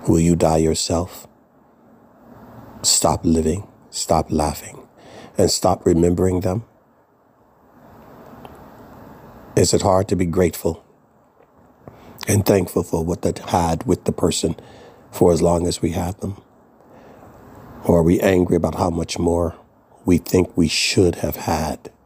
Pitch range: 85-95 Hz